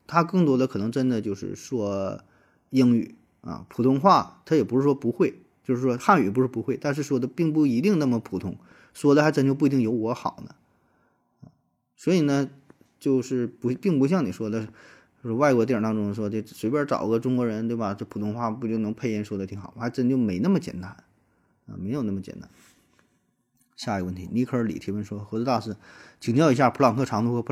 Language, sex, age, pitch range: Chinese, male, 20-39, 105-135 Hz